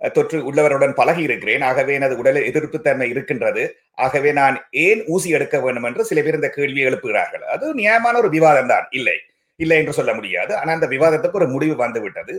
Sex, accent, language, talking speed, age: male, native, Tamil, 175 wpm, 50-69